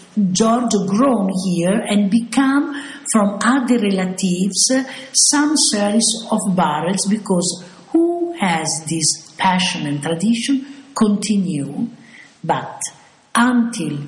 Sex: female